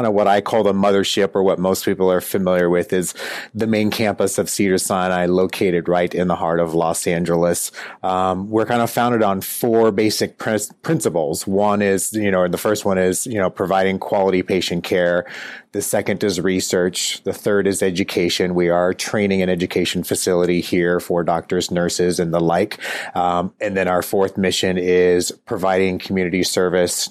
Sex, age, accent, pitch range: male, 30-49, American, 90-110 Hz